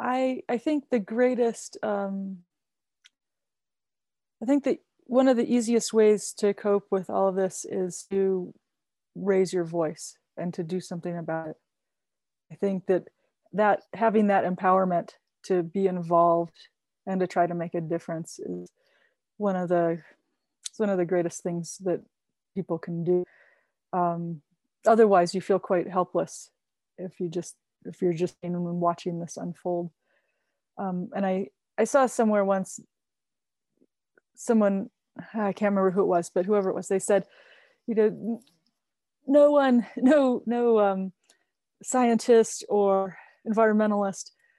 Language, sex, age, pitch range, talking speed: English, female, 30-49, 180-225 Hz, 145 wpm